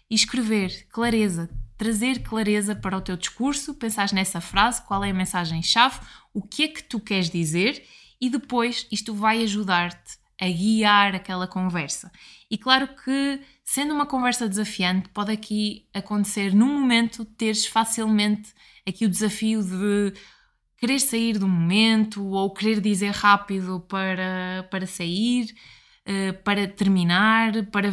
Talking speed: 135 wpm